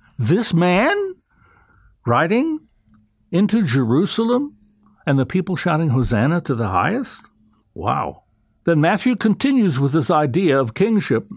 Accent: American